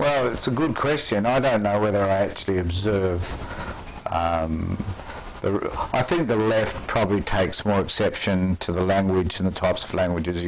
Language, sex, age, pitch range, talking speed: English, male, 60-79, 90-110 Hz, 165 wpm